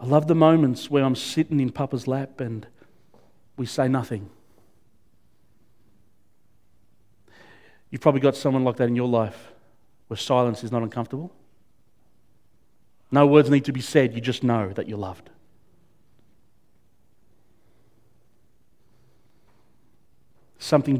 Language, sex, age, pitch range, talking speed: English, male, 40-59, 115-150 Hz, 115 wpm